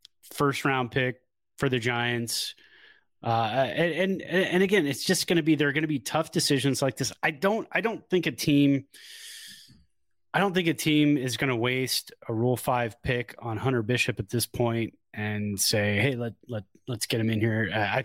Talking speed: 205 wpm